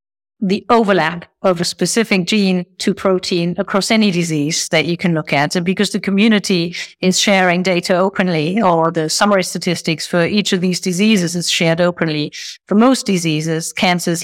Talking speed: 175 wpm